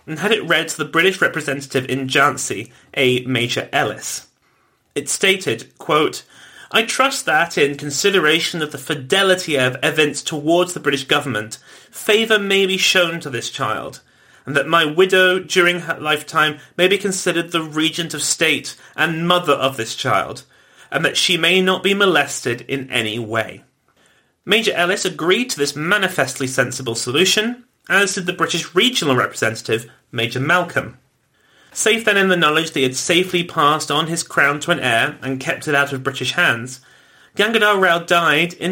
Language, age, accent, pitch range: English, 30-49, British, 130-180 Hz